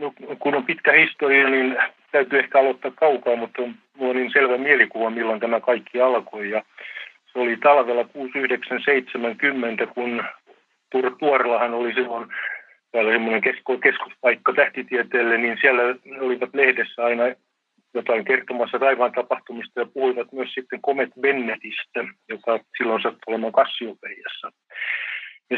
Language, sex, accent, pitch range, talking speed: Finnish, male, native, 115-135 Hz, 125 wpm